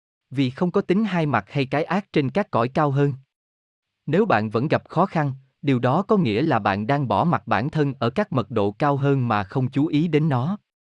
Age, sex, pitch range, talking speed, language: 20-39, male, 110-155 Hz, 240 wpm, Vietnamese